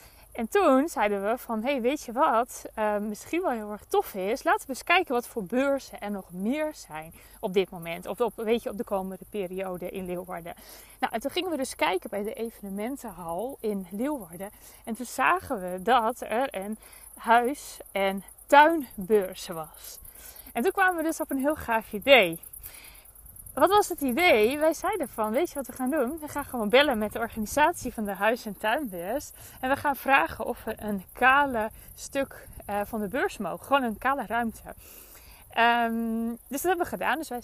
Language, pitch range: Dutch, 205-275 Hz